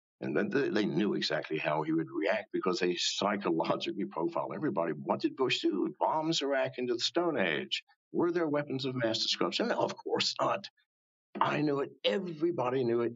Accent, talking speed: American, 180 wpm